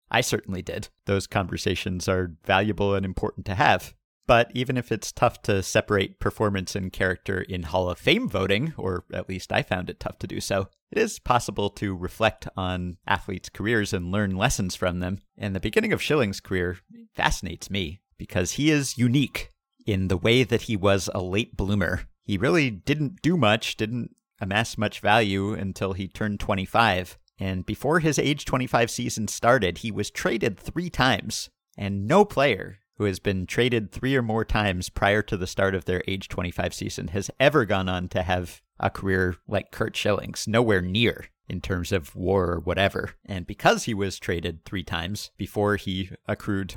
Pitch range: 95-115 Hz